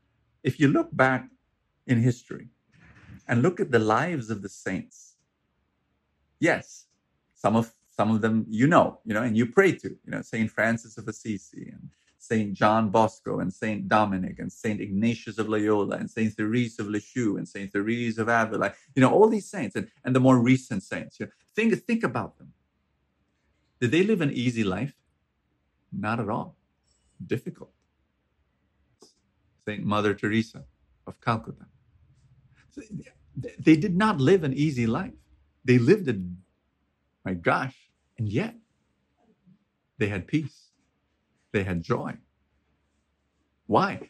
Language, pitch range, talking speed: English, 95-140 Hz, 150 wpm